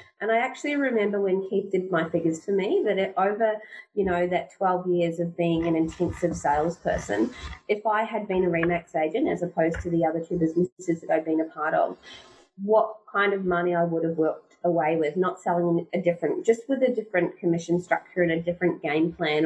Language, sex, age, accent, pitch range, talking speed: English, female, 30-49, Australian, 170-210 Hz, 210 wpm